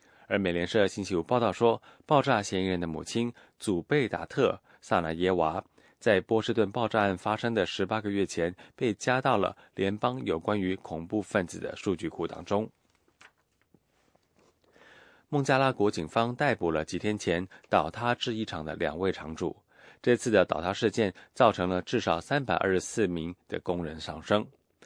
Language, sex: English, male